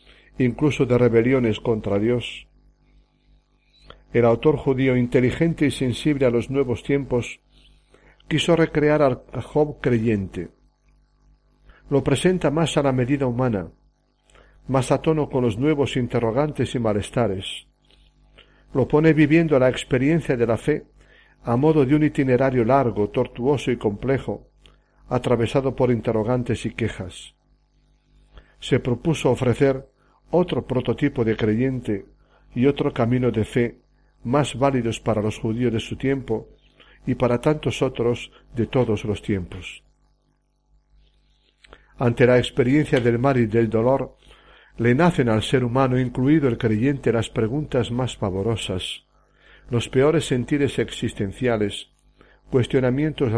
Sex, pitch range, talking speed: male, 110-140 Hz, 125 wpm